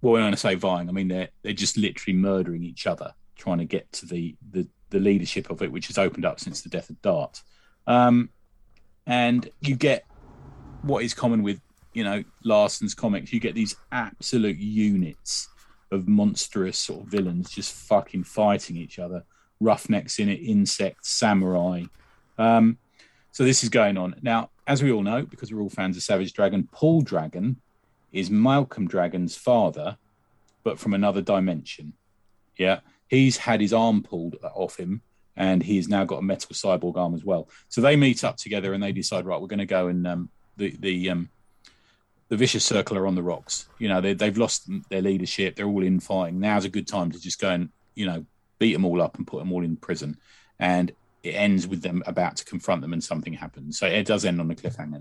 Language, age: English, 30-49